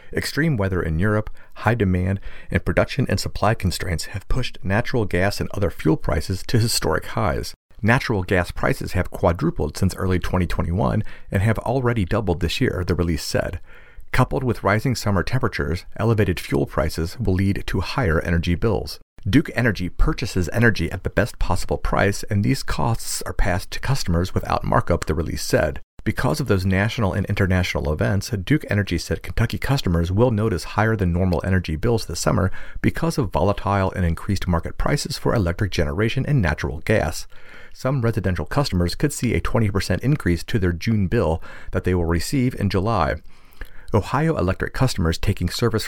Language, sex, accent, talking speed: English, male, American, 170 wpm